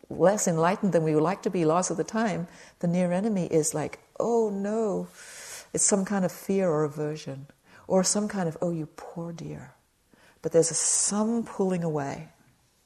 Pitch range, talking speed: 155-195 Hz, 180 wpm